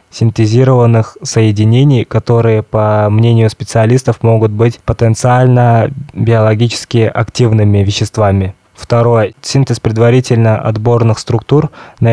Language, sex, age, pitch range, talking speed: Russian, male, 20-39, 110-125 Hz, 90 wpm